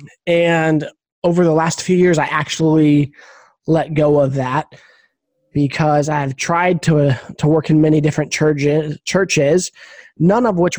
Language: English